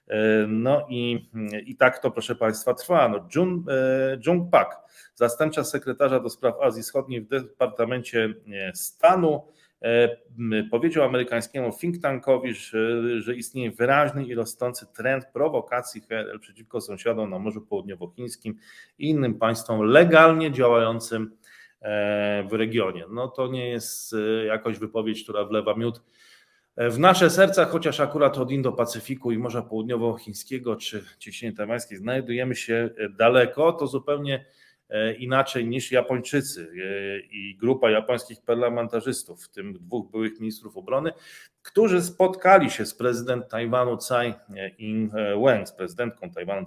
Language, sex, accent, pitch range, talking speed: Polish, male, native, 110-140 Hz, 125 wpm